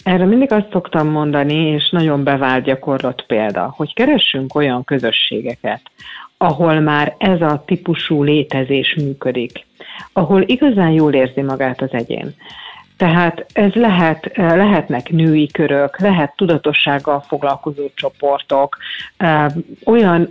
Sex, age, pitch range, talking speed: female, 50-69, 140-175 Hz, 110 wpm